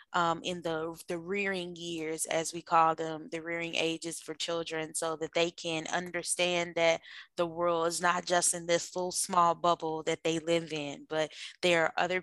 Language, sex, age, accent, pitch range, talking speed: English, female, 10-29, American, 160-180 Hz, 190 wpm